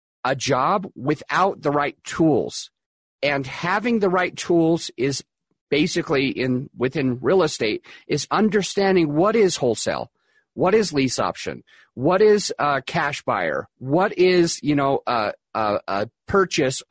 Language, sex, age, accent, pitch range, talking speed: English, male, 40-59, American, 135-185 Hz, 140 wpm